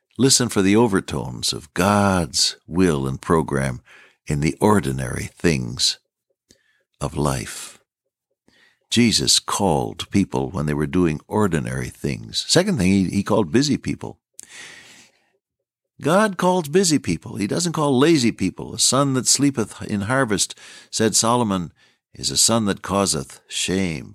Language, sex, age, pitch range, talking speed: English, male, 60-79, 90-125 Hz, 135 wpm